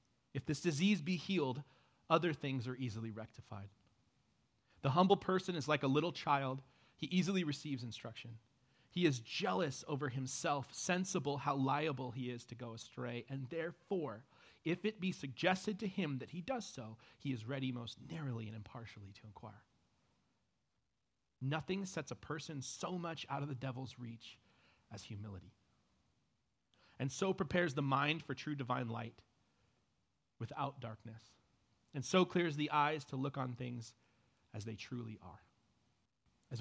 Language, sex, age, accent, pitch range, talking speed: English, male, 30-49, American, 115-145 Hz, 155 wpm